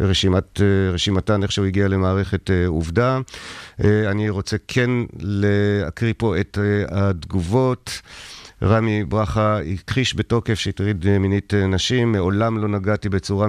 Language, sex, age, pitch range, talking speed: Hebrew, male, 50-69, 95-110 Hz, 125 wpm